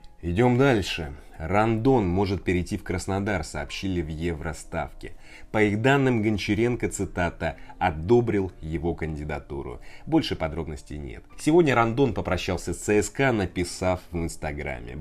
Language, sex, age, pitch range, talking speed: Russian, male, 20-39, 80-105 Hz, 115 wpm